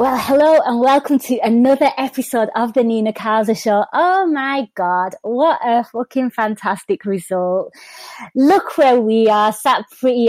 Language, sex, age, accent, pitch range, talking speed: English, female, 20-39, British, 230-295 Hz, 150 wpm